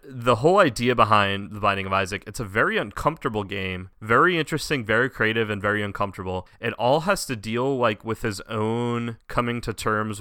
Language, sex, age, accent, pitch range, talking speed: English, male, 30-49, American, 100-115 Hz, 190 wpm